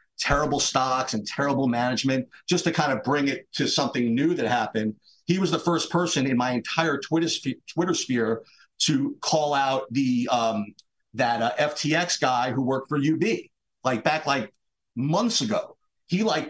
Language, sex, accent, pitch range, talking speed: English, male, American, 130-170 Hz, 165 wpm